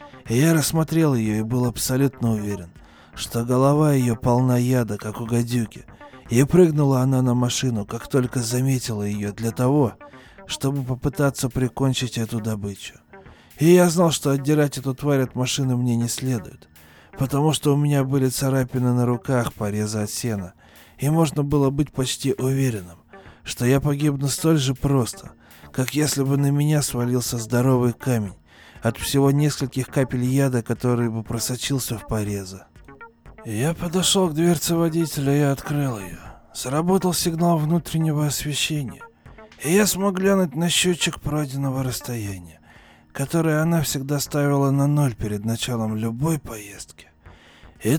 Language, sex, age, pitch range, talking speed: Russian, male, 20-39, 115-150 Hz, 145 wpm